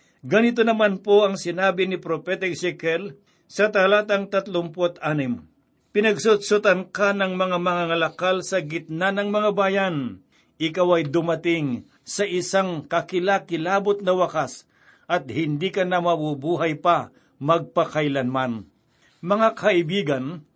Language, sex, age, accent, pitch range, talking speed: Filipino, male, 60-79, native, 160-195 Hz, 115 wpm